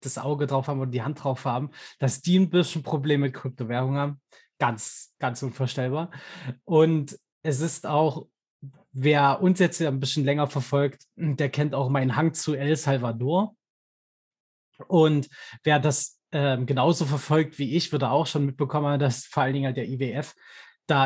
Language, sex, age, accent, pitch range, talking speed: German, male, 20-39, German, 135-160 Hz, 170 wpm